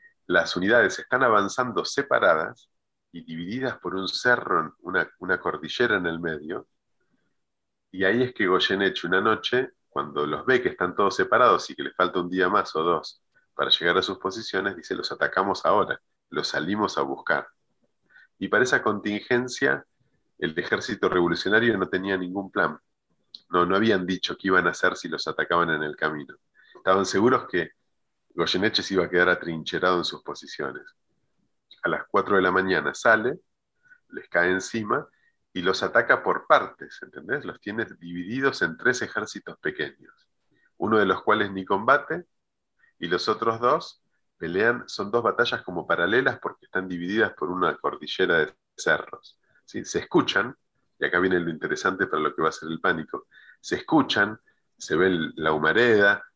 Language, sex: Spanish, male